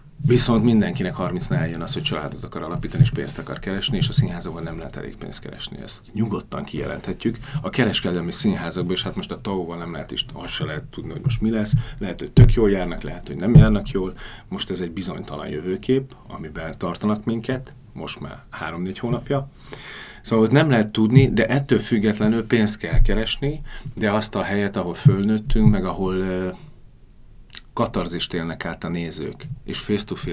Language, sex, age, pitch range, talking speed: Hungarian, male, 30-49, 90-120 Hz, 180 wpm